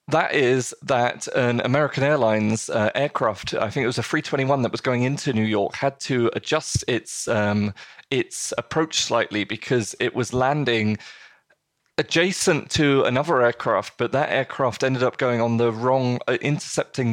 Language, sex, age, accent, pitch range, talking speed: English, male, 30-49, British, 115-140 Hz, 170 wpm